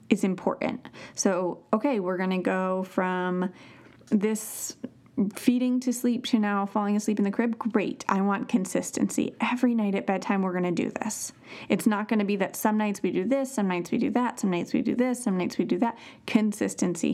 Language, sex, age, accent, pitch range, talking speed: English, female, 30-49, American, 185-230 Hz, 210 wpm